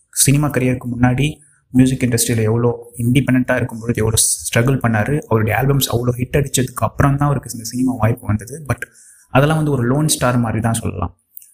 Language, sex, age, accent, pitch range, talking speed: Tamil, male, 20-39, native, 115-130 Hz, 155 wpm